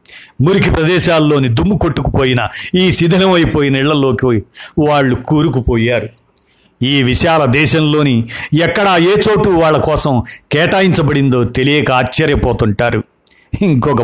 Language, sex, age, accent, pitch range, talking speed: Telugu, male, 50-69, native, 130-165 Hz, 90 wpm